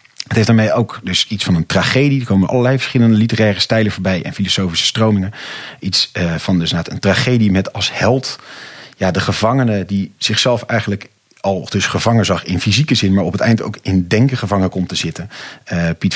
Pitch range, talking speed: 95-115 Hz, 190 wpm